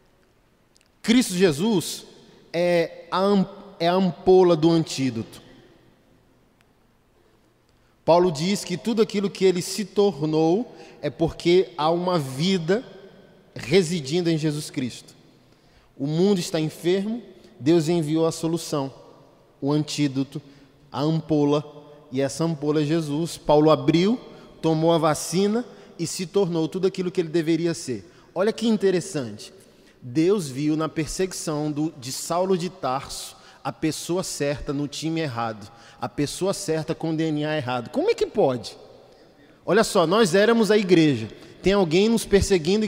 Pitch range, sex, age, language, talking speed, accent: 150-190 Hz, male, 20-39, Portuguese, 130 wpm, Brazilian